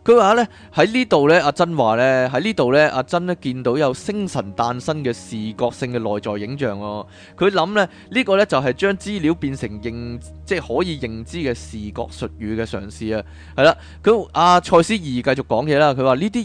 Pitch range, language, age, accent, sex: 115-170 Hz, Chinese, 20-39, native, male